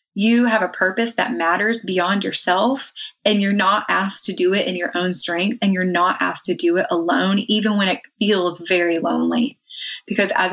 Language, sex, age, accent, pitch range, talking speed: English, female, 20-39, American, 175-220 Hz, 200 wpm